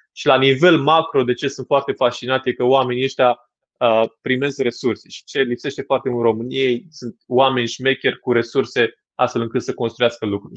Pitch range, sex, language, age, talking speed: 115-130 Hz, male, Romanian, 20-39, 185 wpm